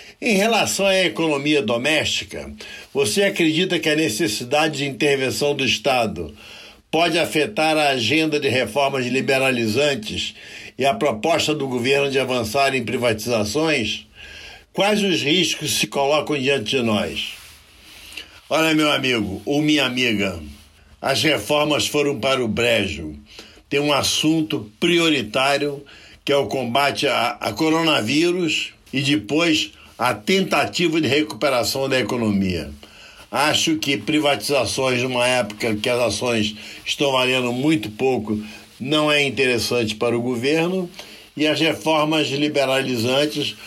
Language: Portuguese